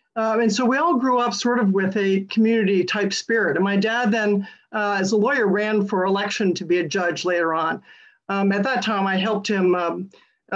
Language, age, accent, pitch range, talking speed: English, 50-69, American, 185-225 Hz, 220 wpm